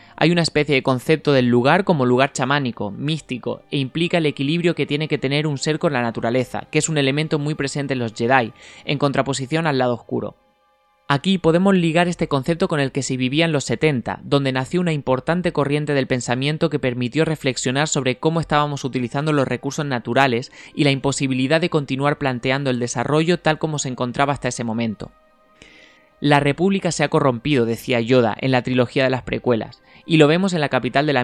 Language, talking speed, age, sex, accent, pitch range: Spanish, 200 wpm, 20-39, male, Spanish, 130-160 Hz